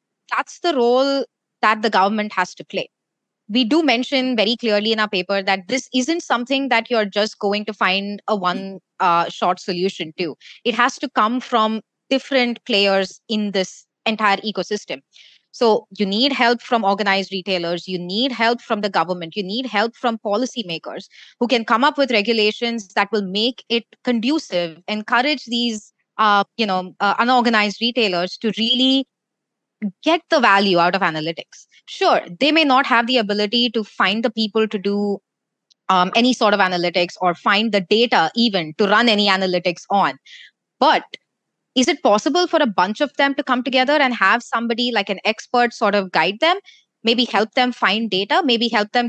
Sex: female